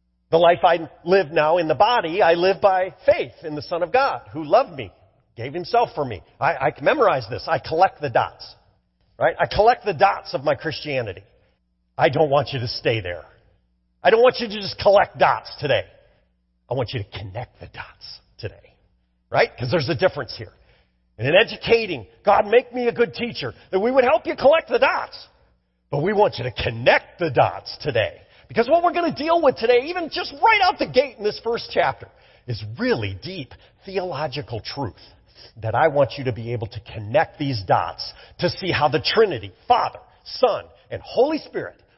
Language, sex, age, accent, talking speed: English, male, 40-59, American, 200 wpm